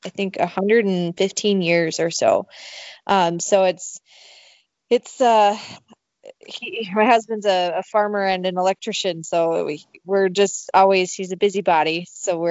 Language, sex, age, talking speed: English, female, 20-39, 150 wpm